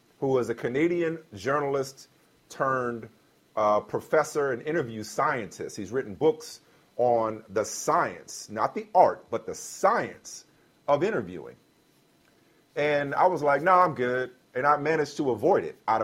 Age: 40-59